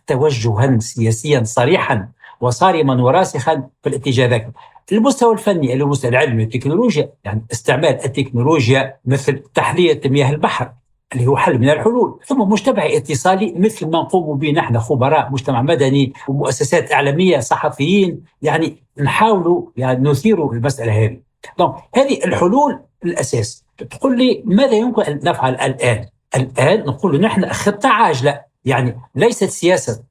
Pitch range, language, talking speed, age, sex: 130-190 Hz, Arabic, 125 wpm, 60-79, male